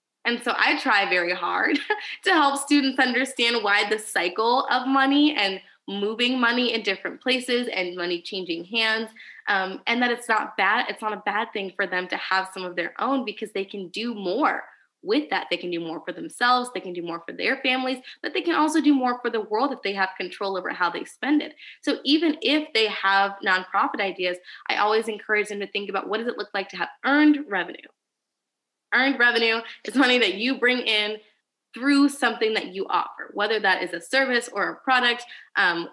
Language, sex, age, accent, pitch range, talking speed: English, female, 20-39, American, 195-255 Hz, 210 wpm